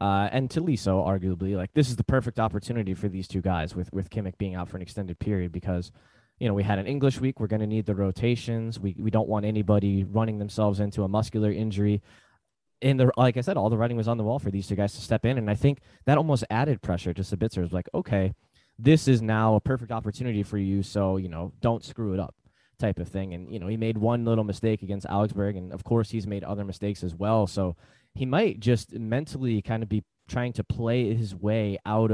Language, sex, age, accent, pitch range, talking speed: English, male, 20-39, American, 100-125 Hz, 245 wpm